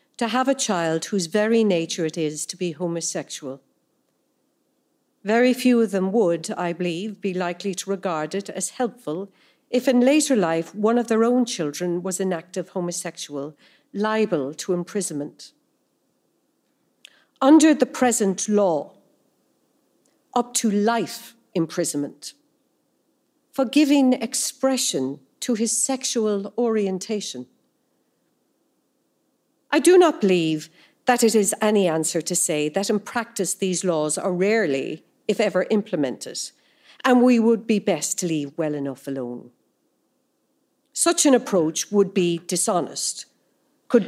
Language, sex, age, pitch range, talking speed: English, female, 50-69, 175-255 Hz, 130 wpm